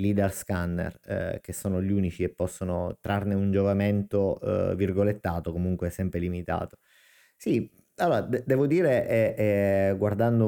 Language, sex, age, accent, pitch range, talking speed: Italian, male, 30-49, native, 90-100 Hz, 145 wpm